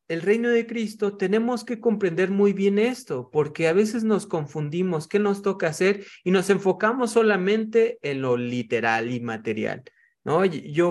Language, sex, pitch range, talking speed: Spanish, male, 130-190 Hz, 165 wpm